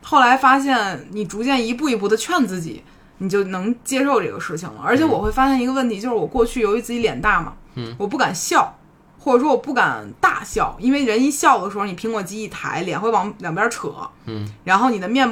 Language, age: Chinese, 20-39